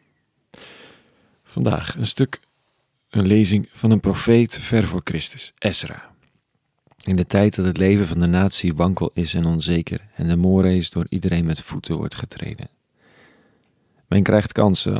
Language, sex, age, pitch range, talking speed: Dutch, male, 40-59, 85-105 Hz, 150 wpm